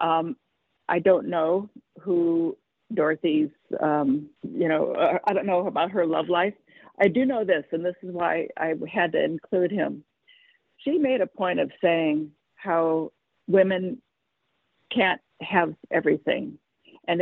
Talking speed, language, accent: 145 wpm, English, American